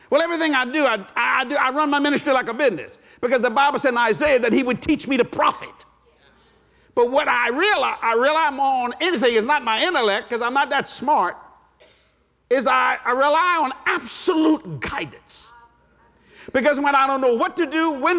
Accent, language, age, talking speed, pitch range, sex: American, English, 60-79, 200 wpm, 265-355 Hz, male